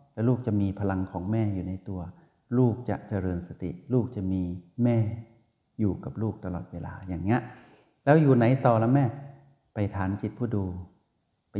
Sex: male